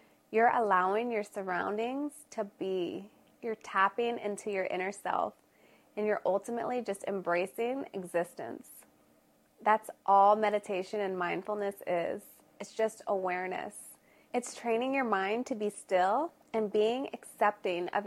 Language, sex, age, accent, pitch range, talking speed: English, female, 20-39, American, 195-235 Hz, 125 wpm